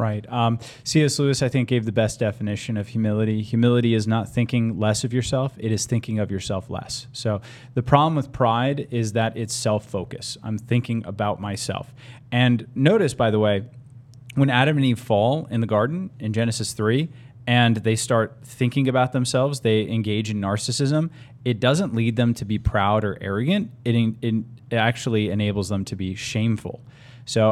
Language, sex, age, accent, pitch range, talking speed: English, male, 30-49, American, 105-125 Hz, 180 wpm